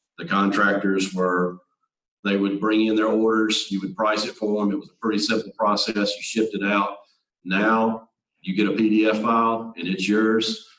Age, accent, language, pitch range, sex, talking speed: 50-69, American, English, 95-110 Hz, male, 190 wpm